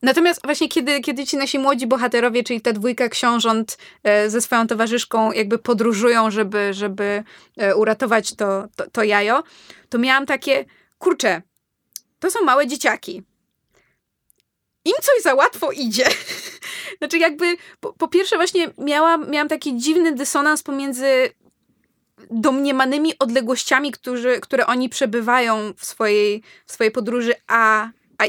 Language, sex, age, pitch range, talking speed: Polish, female, 20-39, 230-285 Hz, 130 wpm